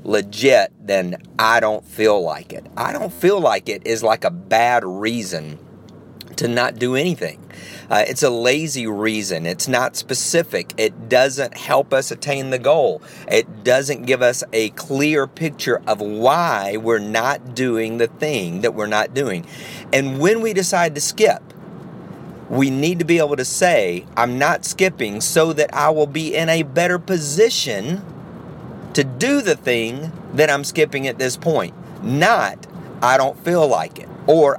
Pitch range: 120-170 Hz